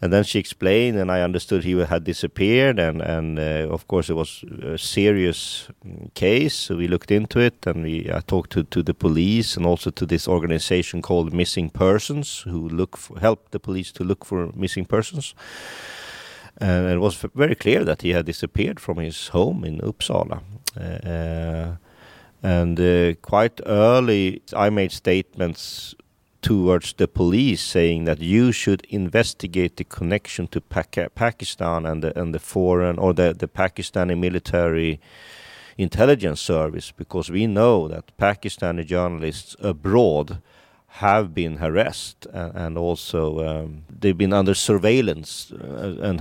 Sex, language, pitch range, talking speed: male, English, 80-100 Hz, 150 wpm